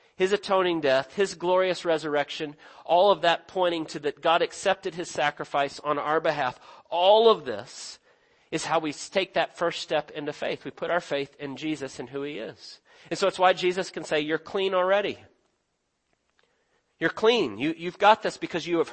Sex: male